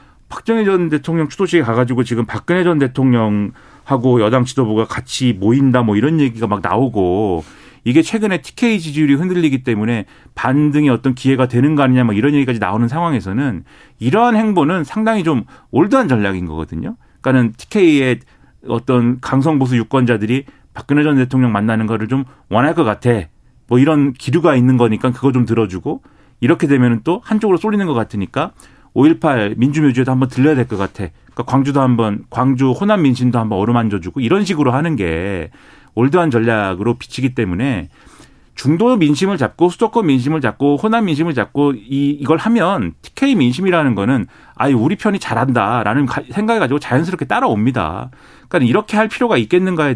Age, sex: 40-59, male